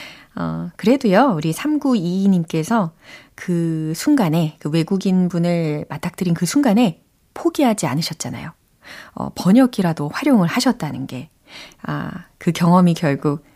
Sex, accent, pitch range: female, native, 165-265 Hz